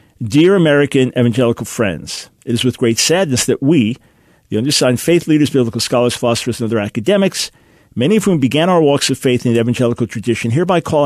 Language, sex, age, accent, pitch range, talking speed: English, male, 50-69, American, 120-150 Hz, 190 wpm